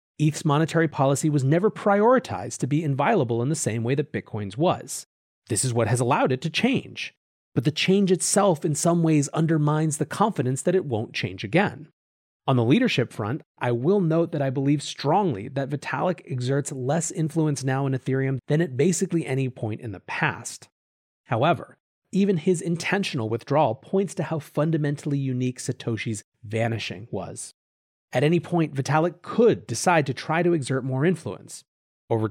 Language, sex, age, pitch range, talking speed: English, male, 30-49, 125-165 Hz, 170 wpm